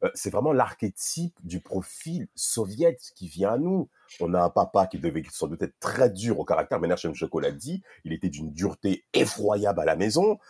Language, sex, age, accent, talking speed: French, male, 40-59, French, 200 wpm